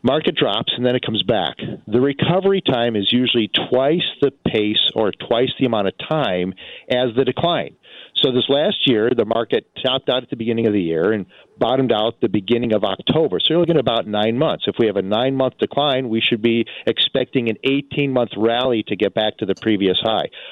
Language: English